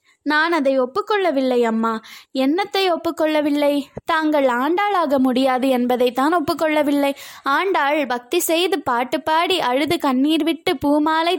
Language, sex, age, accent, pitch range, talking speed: Tamil, female, 20-39, native, 270-345 Hz, 110 wpm